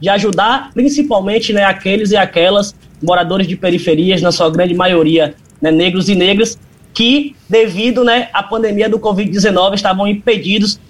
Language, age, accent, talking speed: Portuguese, 20-39, Brazilian, 150 wpm